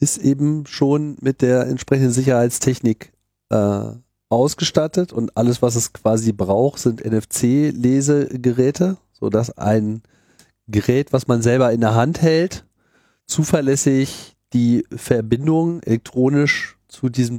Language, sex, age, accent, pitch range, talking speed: German, male, 40-59, German, 115-135 Hz, 115 wpm